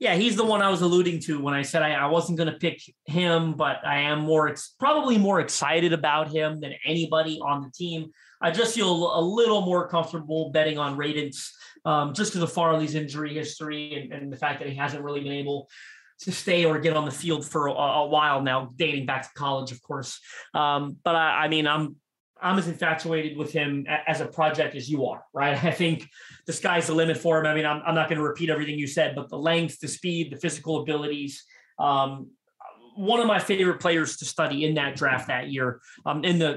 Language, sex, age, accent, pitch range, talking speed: English, male, 30-49, American, 145-165 Hz, 230 wpm